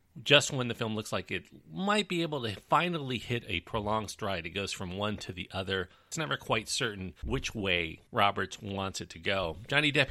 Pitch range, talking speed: 100-145 Hz, 215 wpm